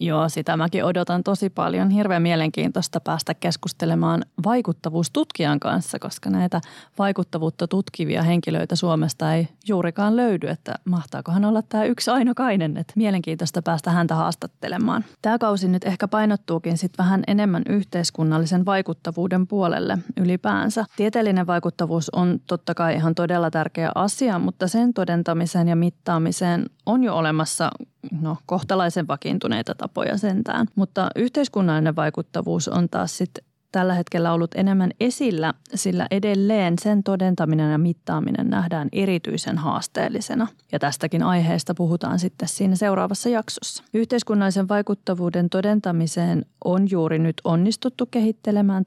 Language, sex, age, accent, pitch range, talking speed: Finnish, female, 20-39, native, 165-205 Hz, 125 wpm